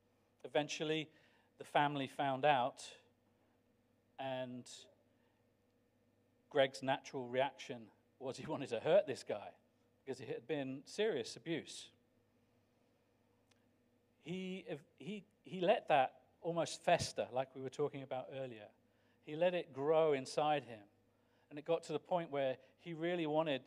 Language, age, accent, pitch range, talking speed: English, 50-69, British, 120-155 Hz, 125 wpm